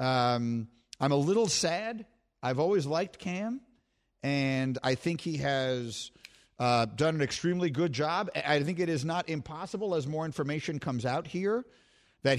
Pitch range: 130-160 Hz